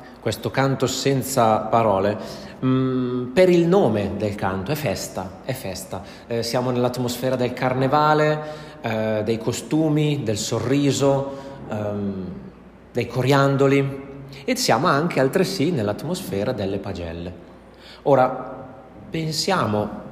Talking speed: 105 wpm